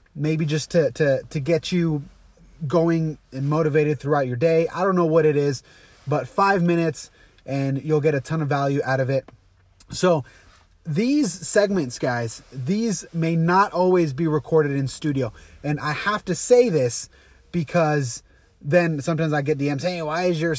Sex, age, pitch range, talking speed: male, 30-49, 140-180 Hz, 175 wpm